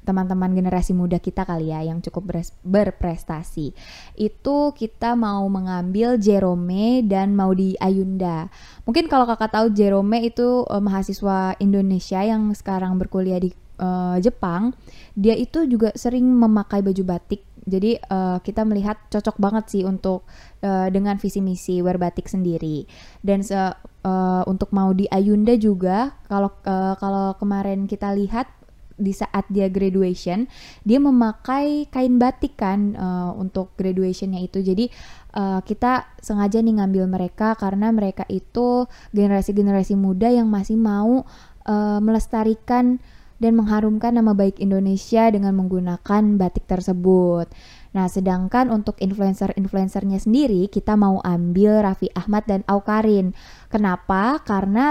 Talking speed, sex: 130 wpm, female